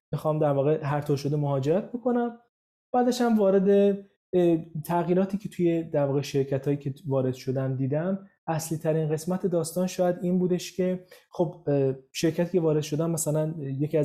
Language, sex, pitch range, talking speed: Persian, male, 140-180 Hz, 155 wpm